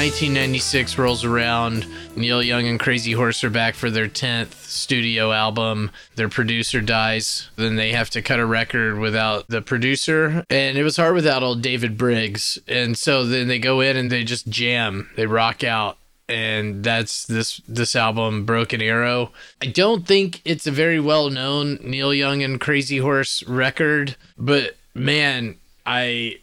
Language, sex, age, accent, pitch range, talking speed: English, male, 20-39, American, 115-145 Hz, 165 wpm